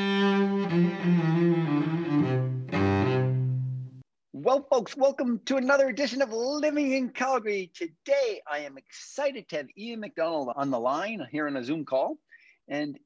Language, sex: English, male